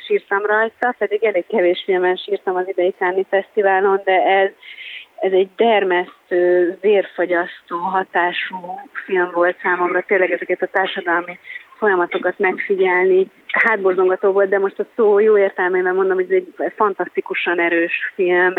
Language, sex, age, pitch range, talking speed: Hungarian, female, 30-49, 180-215 Hz, 135 wpm